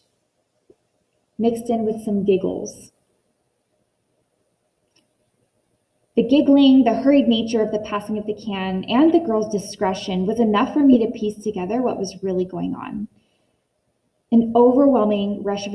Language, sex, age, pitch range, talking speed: English, female, 20-39, 190-240 Hz, 135 wpm